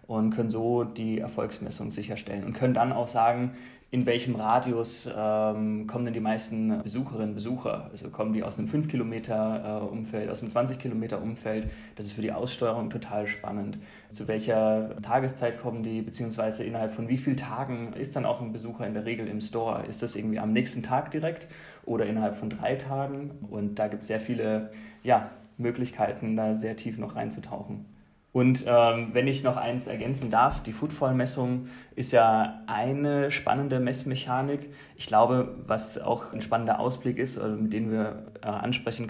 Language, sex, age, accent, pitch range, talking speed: German, male, 30-49, German, 110-125 Hz, 170 wpm